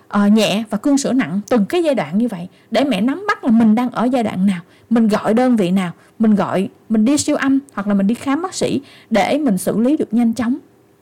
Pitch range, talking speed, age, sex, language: 200-270 Hz, 260 wpm, 20-39, female, Vietnamese